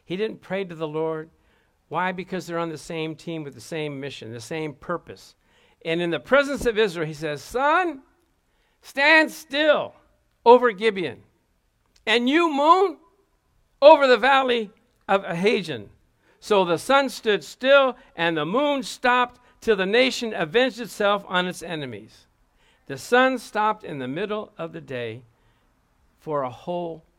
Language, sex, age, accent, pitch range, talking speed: English, male, 60-79, American, 165-245 Hz, 155 wpm